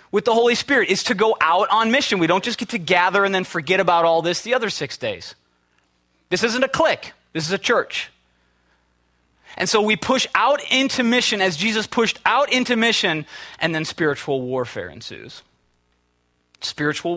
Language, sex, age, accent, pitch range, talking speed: English, male, 30-49, American, 120-195 Hz, 185 wpm